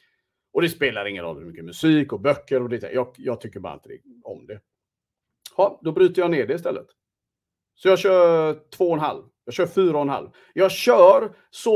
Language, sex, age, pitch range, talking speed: Swedish, male, 40-59, 155-215 Hz, 215 wpm